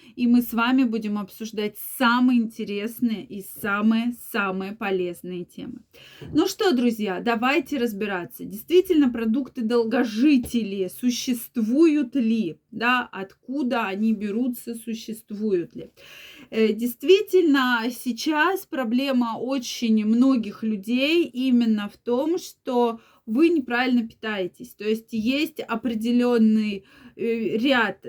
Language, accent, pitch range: Russian, native, 220-270 Hz